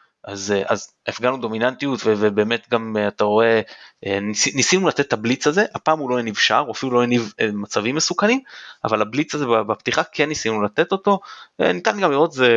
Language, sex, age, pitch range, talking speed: Hebrew, male, 20-39, 110-150 Hz, 175 wpm